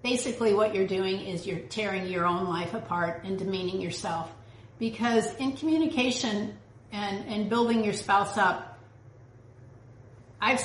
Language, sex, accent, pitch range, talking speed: English, female, American, 175-225 Hz, 135 wpm